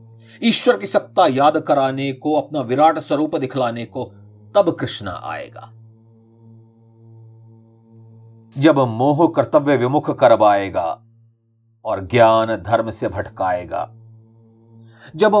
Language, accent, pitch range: Hindi, native, 115-140 Hz